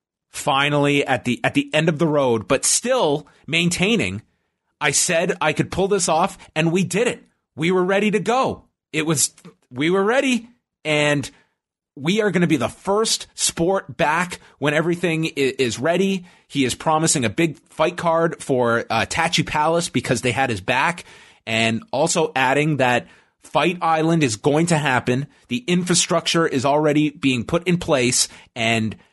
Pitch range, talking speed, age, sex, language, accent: 120-170 Hz, 170 wpm, 30-49, male, English, American